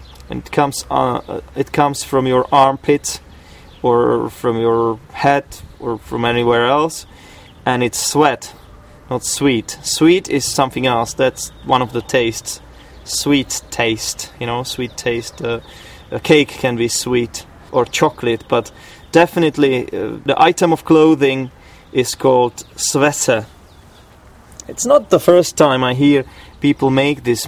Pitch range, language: 115-155 Hz, English